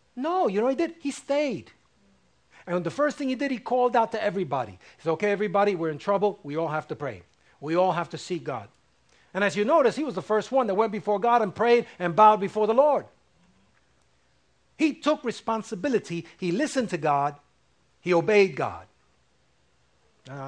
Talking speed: 200 wpm